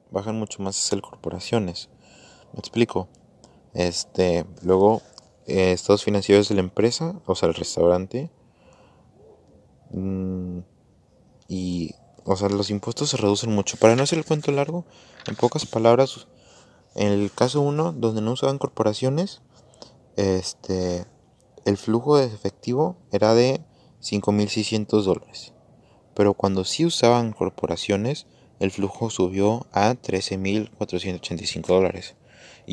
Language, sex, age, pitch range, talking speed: Spanish, male, 20-39, 95-120 Hz, 120 wpm